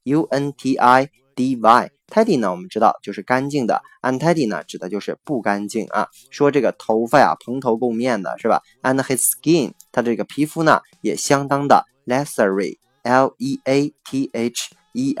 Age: 20-39